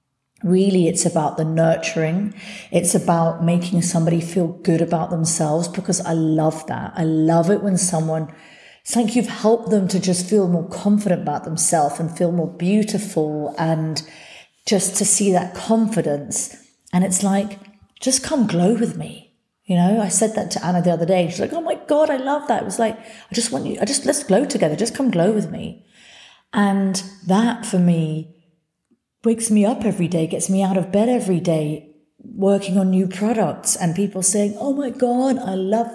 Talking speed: 190 wpm